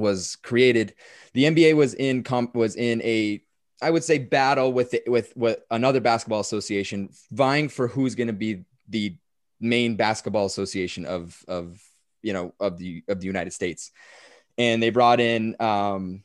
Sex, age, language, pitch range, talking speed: male, 20-39, English, 100-120 Hz, 165 wpm